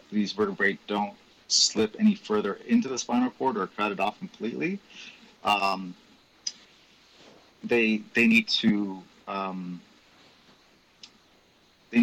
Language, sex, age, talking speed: English, male, 30-49, 110 wpm